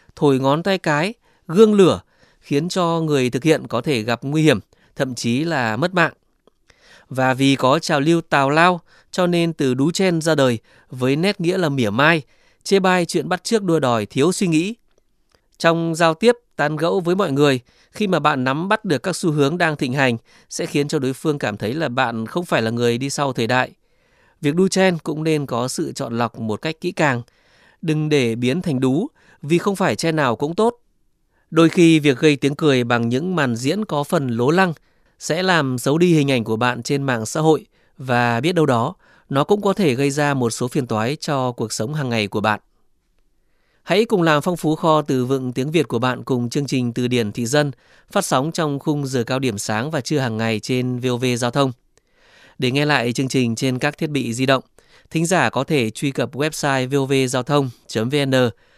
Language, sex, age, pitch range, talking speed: Vietnamese, male, 20-39, 125-165 Hz, 220 wpm